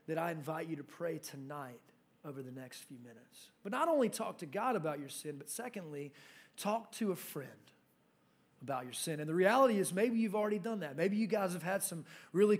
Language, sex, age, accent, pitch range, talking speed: English, male, 30-49, American, 165-215 Hz, 220 wpm